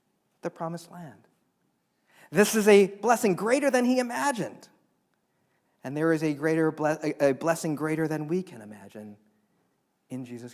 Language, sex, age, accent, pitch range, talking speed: English, male, 40-59, American, 135-185 Hz, 130 wpm